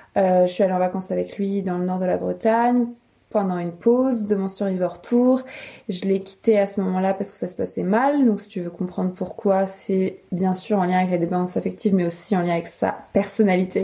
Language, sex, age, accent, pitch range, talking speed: French, female, 20-39, French, 185-230 Hz, 240 wpm